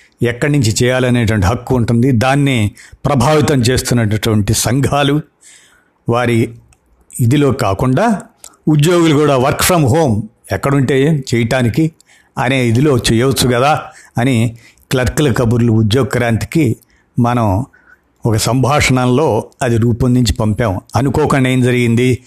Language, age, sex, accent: Telugu, 50-69, male, native